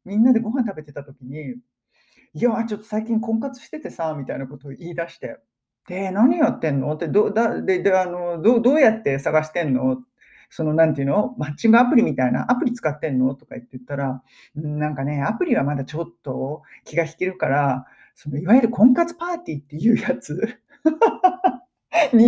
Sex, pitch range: male, 140-235 Hz